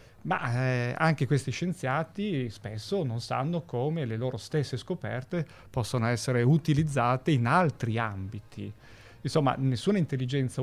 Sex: male